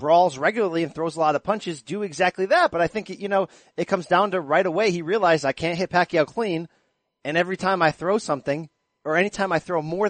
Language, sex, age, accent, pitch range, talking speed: English, male, 30-49, American, 140-195 Hz, 250 wpm